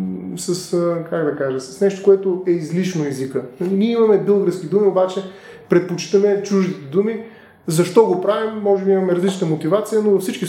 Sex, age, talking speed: male, 20-39, 165 wpm